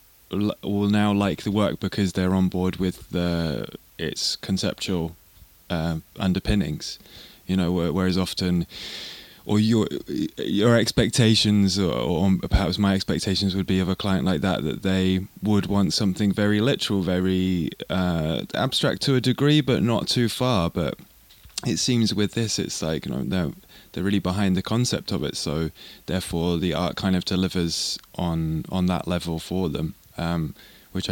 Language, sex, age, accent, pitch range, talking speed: English, male, 20-39, British, 90-105 Hz, 165 wpm